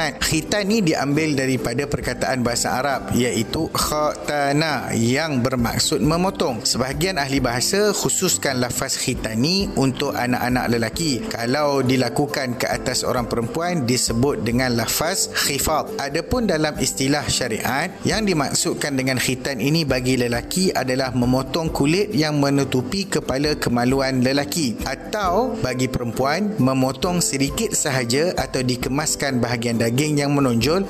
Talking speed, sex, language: 120 wpm, male, Malay